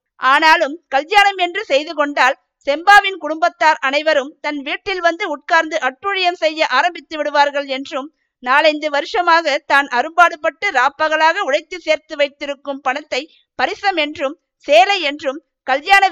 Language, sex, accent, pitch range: Tamil, female, native, 275-335 Hz